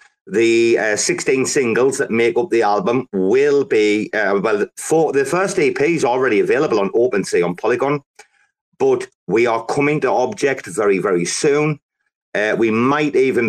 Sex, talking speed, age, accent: male, 165 wpm, 40-59, British